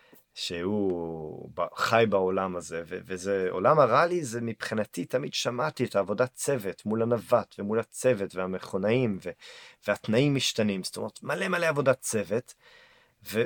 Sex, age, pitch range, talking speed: male, 30-49, 100-140 Hz, 140 wpm